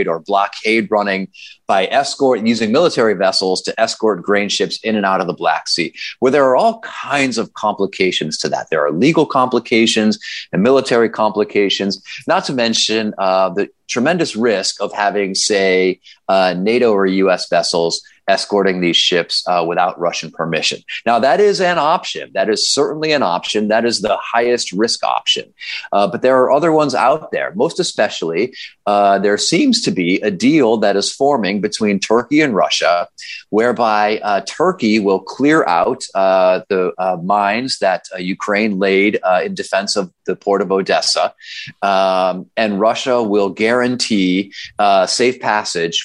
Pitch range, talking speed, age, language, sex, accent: 95-115 Hz, 165 wpm, 30-49, English, male, American